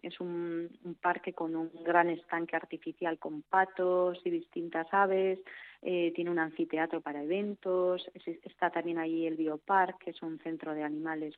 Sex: female